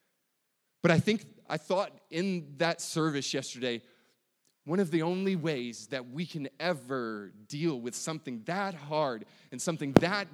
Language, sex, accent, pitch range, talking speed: English, male, American, 145-190 Hz, 150 wpm